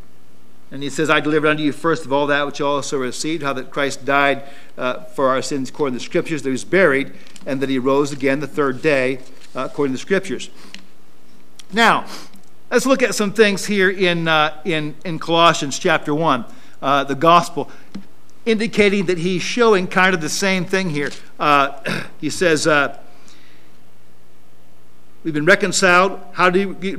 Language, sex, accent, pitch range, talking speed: English, male, American, 140-205 Hz, 180 wpm